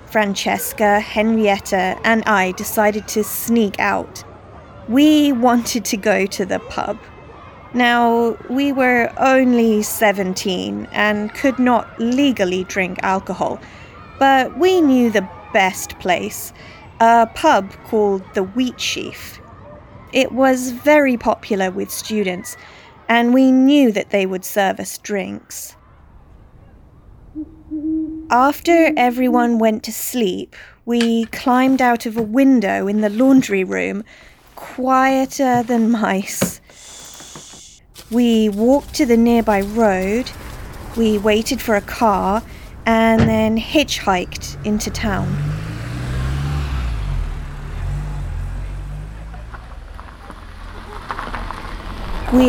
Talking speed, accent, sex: 100 wpm, British, female